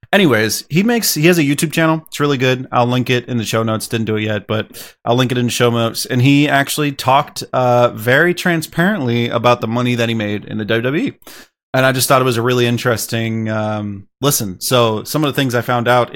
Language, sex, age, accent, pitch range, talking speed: English, male, 30-49, American, 110-130 Hz, 240 wpm